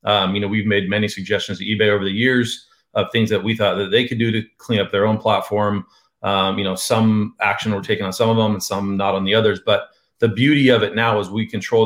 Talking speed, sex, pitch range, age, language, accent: 270 wpm, male, 100-115 Hz, 30-49, English, American